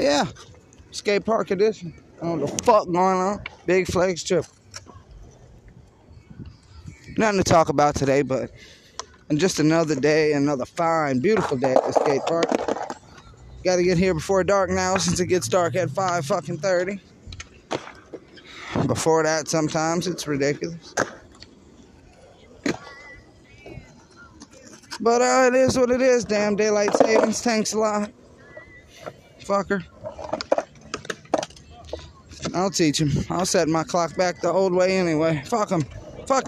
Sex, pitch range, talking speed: male, 160-210 Hz, 135 wpm